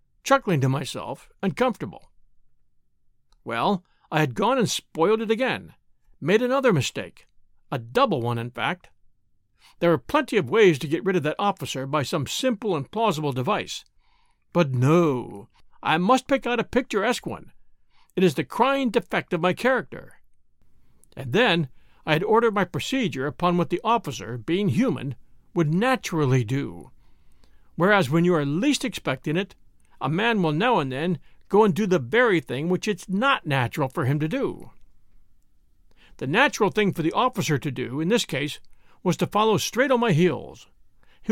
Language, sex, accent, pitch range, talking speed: English, male, American, 155-225 Hz, 170 wpm